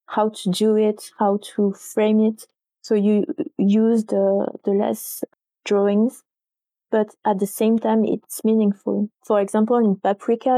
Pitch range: 205-225 Hz